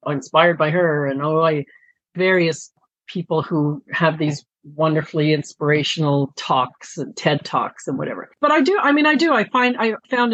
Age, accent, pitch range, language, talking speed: 50-69, American, 155-195 Hz, English, 180 wpm